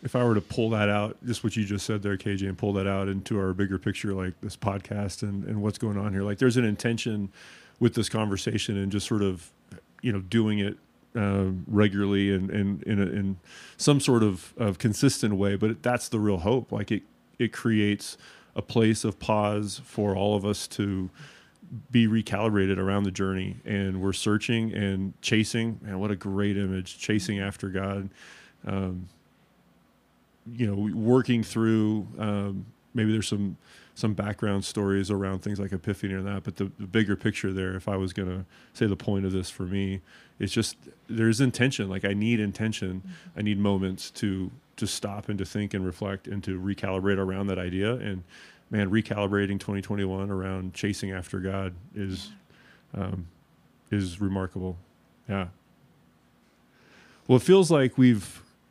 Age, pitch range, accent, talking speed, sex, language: 30-49, 95-110 Hz, American, 180 wpm, male, English